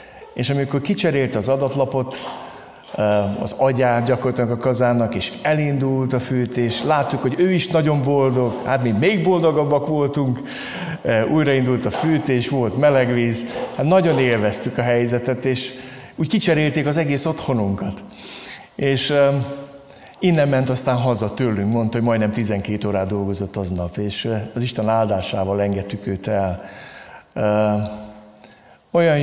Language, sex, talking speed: Hungarian, male, 125 wpm